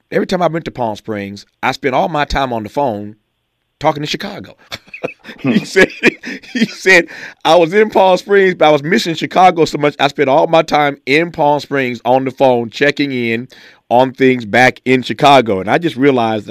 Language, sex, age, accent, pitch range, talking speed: English, male, 40-59, American, 110-140 Hz, 205 wpm